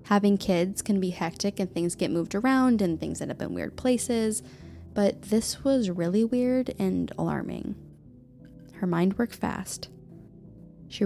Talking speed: 155 wpm